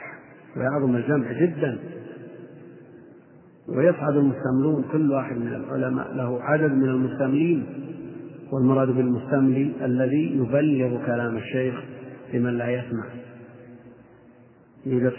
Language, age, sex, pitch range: Arabic, 40-59, male, 120-135 Hz